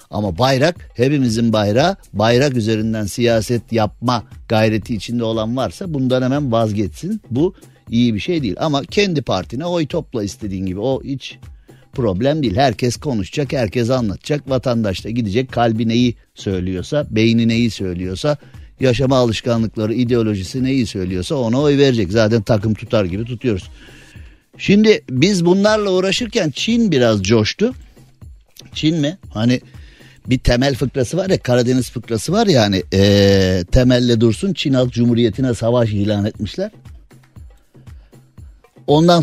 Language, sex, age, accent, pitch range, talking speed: Turkish, male, 50-69, native, 110-135 Hz, 135 wpm